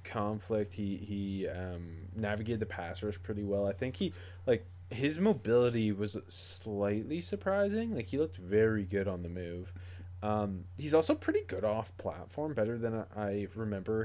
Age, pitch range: 20-39, 90-115 Hz